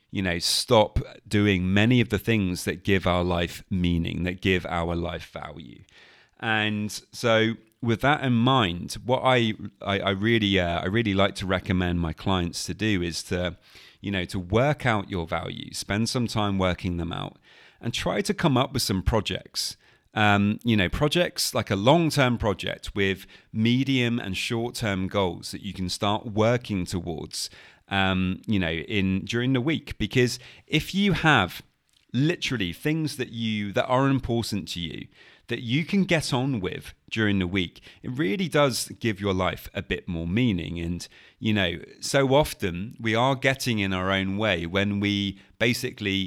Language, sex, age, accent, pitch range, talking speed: English, male, 30-49, British, 95-120 Hz, 175 wpm